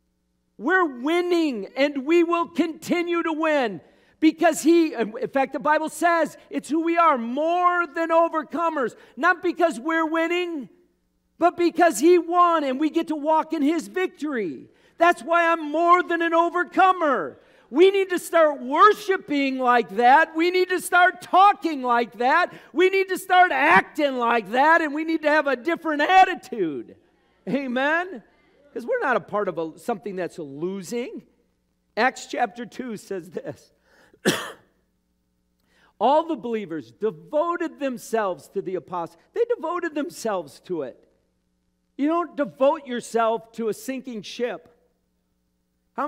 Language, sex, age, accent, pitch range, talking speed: English, male, 50-69, American, 200-335 Hz, 145 wpm